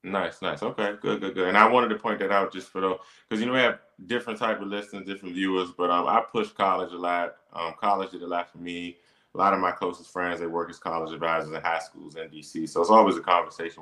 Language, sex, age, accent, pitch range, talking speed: English, male, 20-39, American, 80-100 Hz, 270 wpm